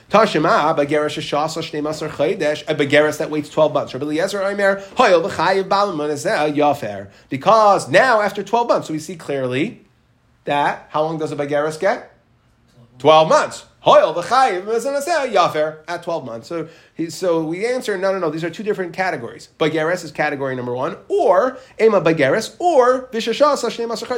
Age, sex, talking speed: 30-49, male, 125 wpm